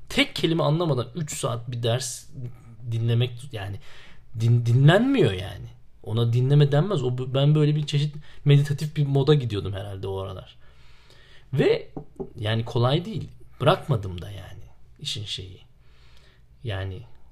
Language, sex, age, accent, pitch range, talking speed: Turkish, male, 40-59, native, 110-140 Hz, 120 wpm